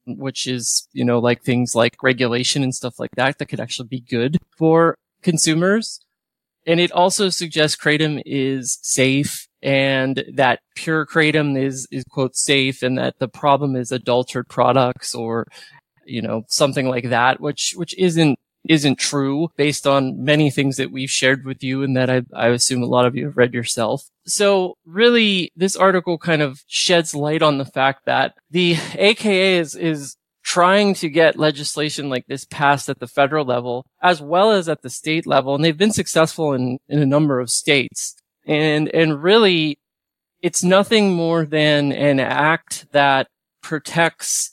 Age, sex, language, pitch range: 20-39, male, English, 130-165 Hz